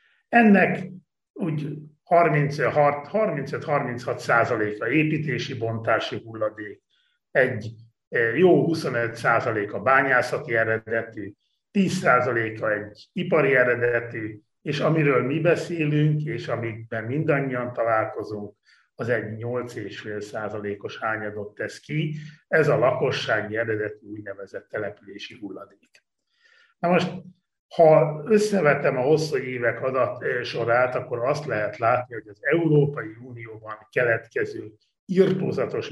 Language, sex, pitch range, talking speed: Hungarian, male, 115-165 Hz, 100 wpm